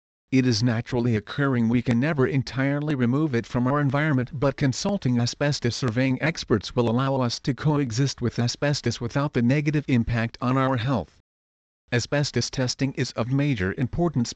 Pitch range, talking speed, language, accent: 120-140 Hz, 160 wpm, English, American